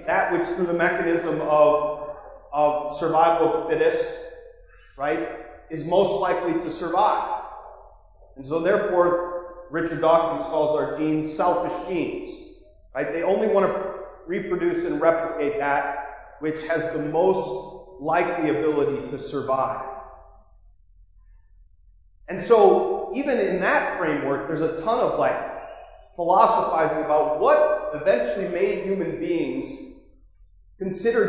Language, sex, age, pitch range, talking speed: English, male, 30-49, 145-195 Hz, 115 wpm